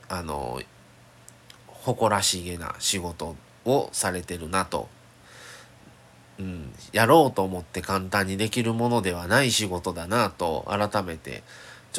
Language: Japanese